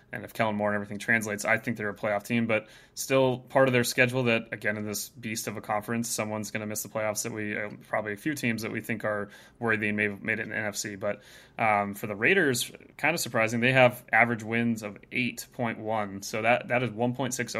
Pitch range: 105-120 Hz